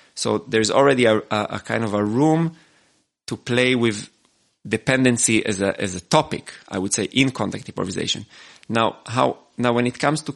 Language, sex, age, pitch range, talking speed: English, male, 30-49, 105-130 Hz, 185 wpm